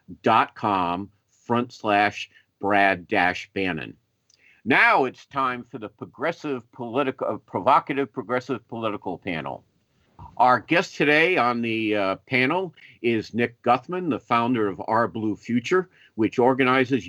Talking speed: 125 wpm